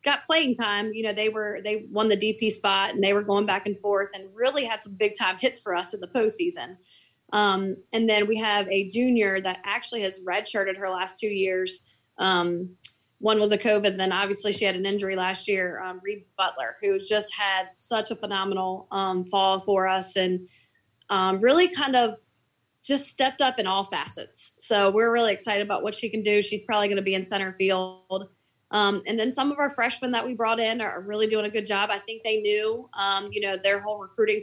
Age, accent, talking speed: 20-39, American, 220 wpm